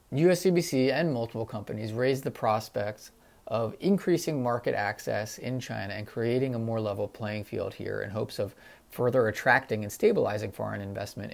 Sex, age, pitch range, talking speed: male, 30-49, 105-130 Hz, 160 wpm